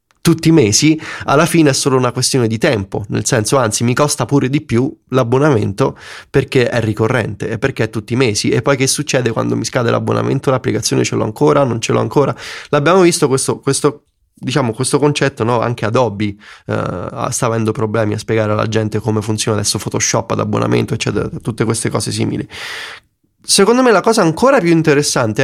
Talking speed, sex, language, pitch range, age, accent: 190 wpm, male, Italian, 110-145 Hz, 20-39, native